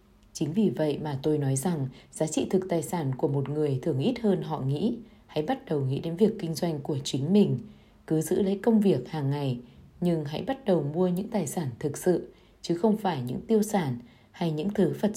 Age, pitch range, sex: 20-39, 140-200 Hz, female